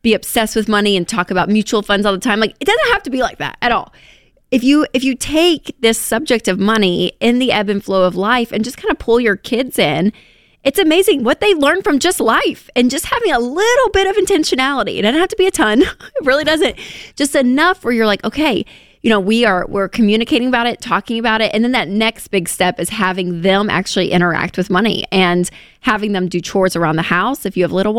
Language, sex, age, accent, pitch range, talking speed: English, female, 20-39, American, 190-255 Hz, 245 wpm